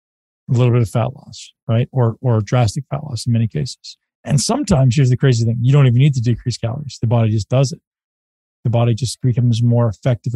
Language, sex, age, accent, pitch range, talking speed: English, male, 40-59, American, 125-150 Hz, 225 wpm